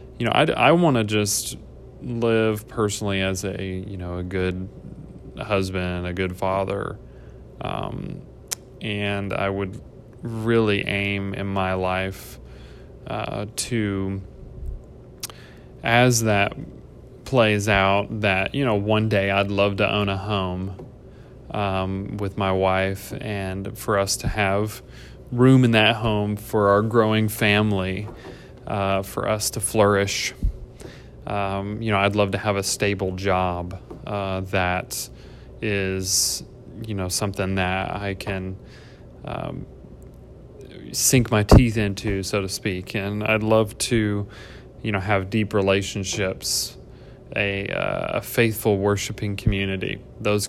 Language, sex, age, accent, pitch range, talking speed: English, male, 20-39, American, 95-110 Hz, 130 wpm